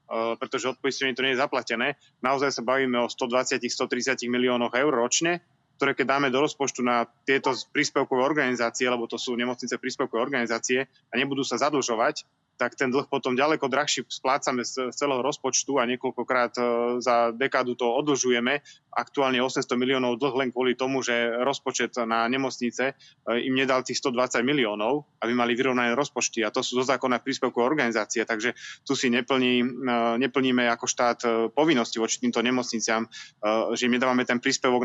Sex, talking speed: male, 160 wpm